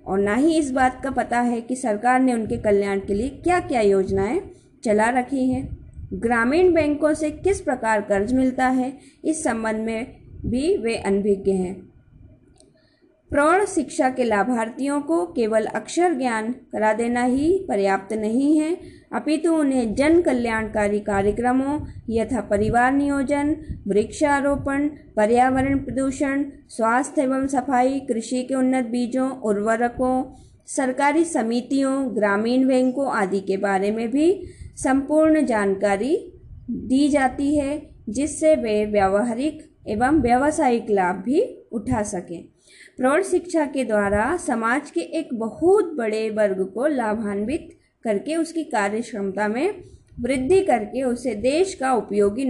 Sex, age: female, 20-39